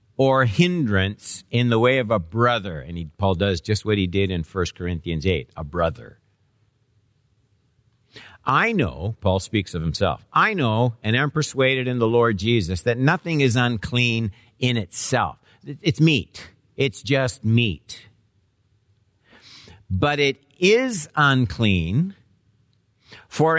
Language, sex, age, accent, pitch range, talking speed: English, male, 50-69, American, 100-130 Hz, 130 wpm